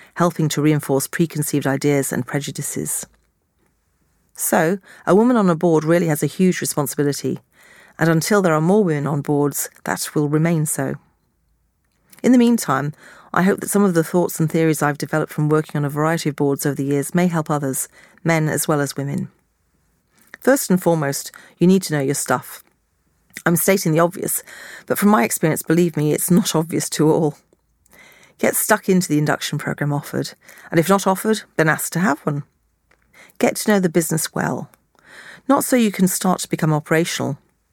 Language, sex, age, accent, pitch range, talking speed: English, female, 40-59, British, 150-180 Hz, 185 wpm